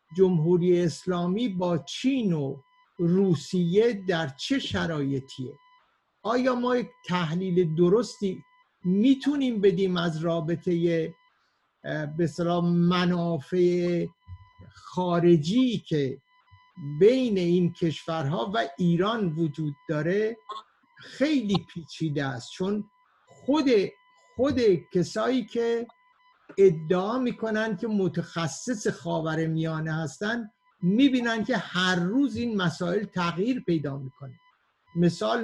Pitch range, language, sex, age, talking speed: 165-215 Hz, Persian, male, 50-69, 90 wpm